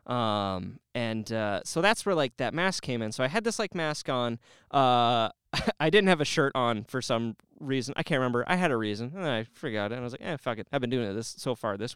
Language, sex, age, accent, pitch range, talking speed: English, male, 30-49, American, 115-180 Hz, 275 wpm